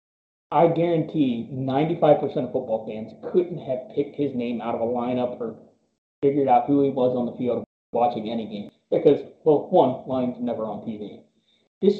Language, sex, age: English, male, 20-39